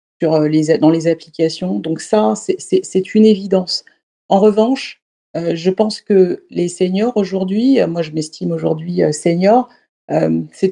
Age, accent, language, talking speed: 40-59, French, French, 135 wpm